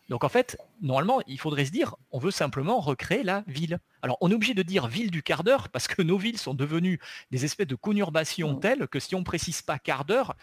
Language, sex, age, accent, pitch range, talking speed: French, male, 40-59, French, 140-200 Hz, 245 wpm